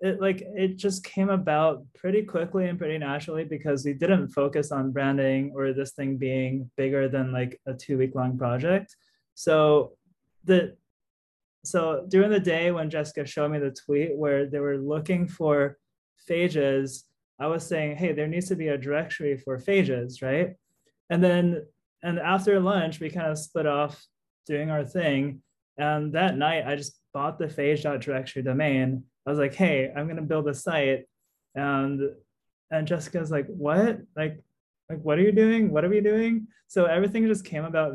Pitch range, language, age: 135-165 Hz, English, 20-39